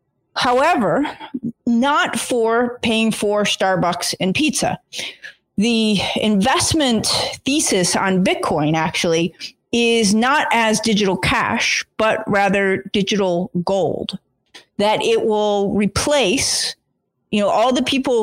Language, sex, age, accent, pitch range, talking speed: English, female, 40-59, American, 195-240 Hz, 105 wpm